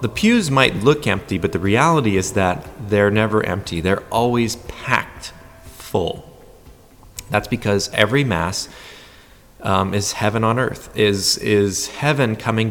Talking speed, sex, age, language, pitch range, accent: 140 wpm, male, 30-49, English, 90-110 Hz, American